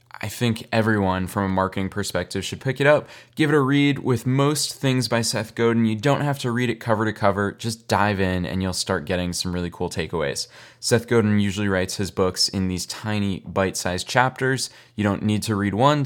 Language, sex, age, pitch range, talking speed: English, male, 20-39, 100-130 Hz, 215 wpm